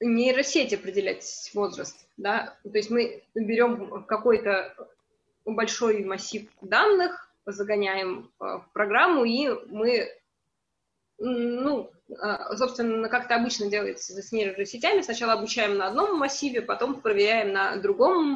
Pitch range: 210-265 Hz